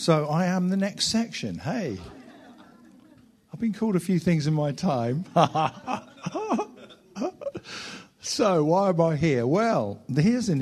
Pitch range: 115-155 Hz